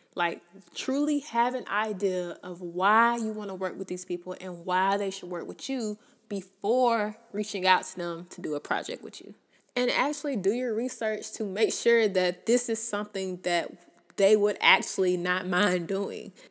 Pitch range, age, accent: 180-235 Hz, 20-39, American